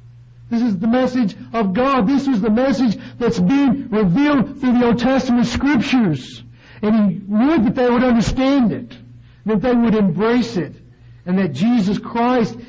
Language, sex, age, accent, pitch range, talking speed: English, male, 60-79, American, 130-210 Hz, 165 wpm